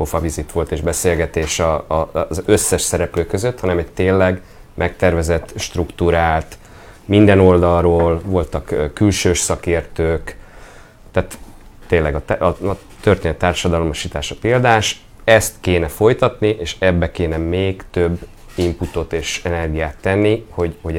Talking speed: 110 wpm